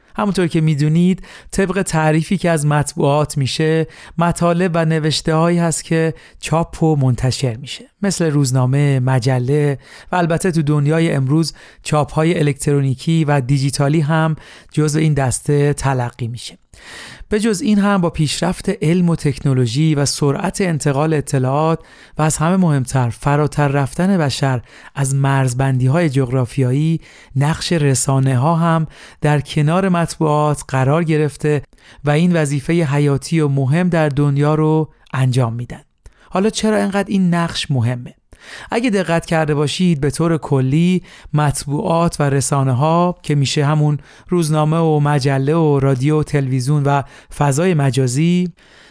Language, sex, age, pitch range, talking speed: Persian, male, 40-59, 140-165 Hz, 135 wpm